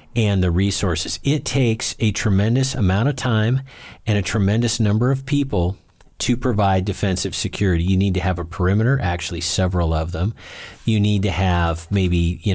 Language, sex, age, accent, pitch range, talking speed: English, male, 40-59, American, 90-115 Hz, 170 wpm